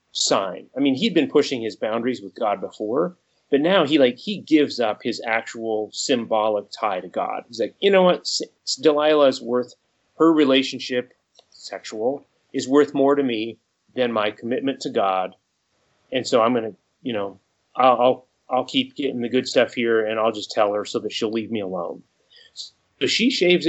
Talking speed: 185 wpm